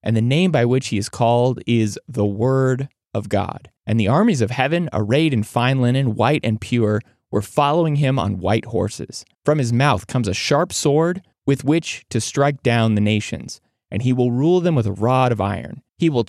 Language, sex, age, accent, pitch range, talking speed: English, male, 20-39, American, 110-140 Hz, 210 wpm